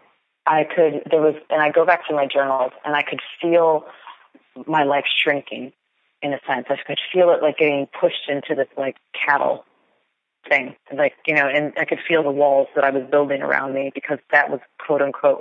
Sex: female